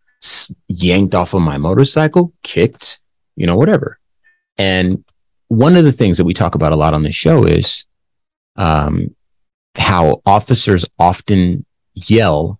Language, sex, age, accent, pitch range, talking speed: English, male, 30-49, American, 85-125 Hz, 140 wpm